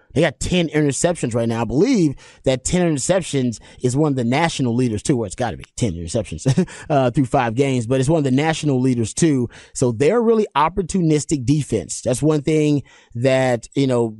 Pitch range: 120-145 Hz